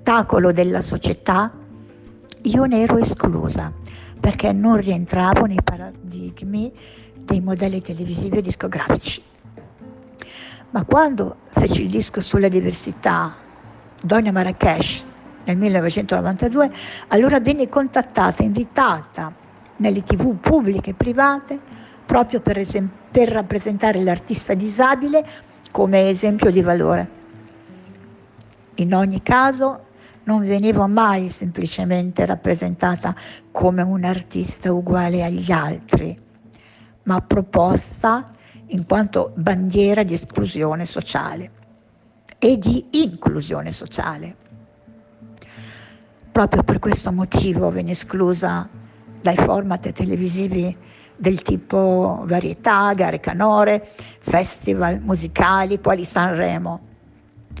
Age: 50-69